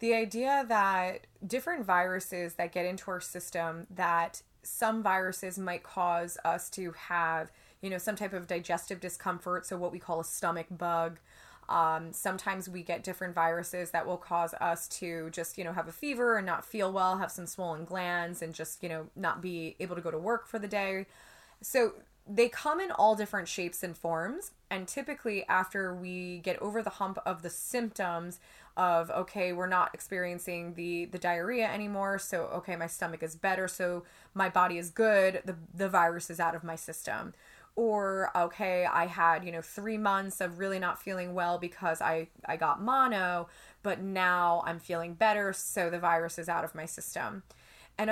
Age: 20-39